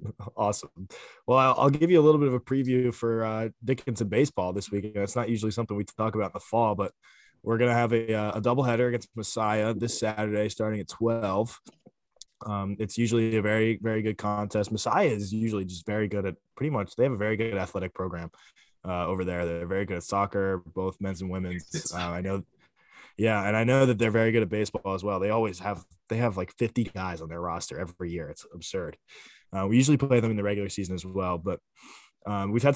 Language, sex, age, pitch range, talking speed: English, male, 20-39, 95-110 Hz, 225 wpm